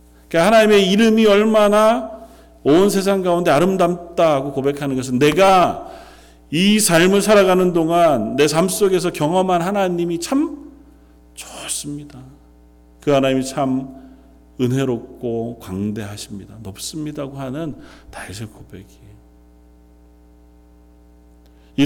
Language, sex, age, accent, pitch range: Korean, male, 40-59, native, 115-160 Hz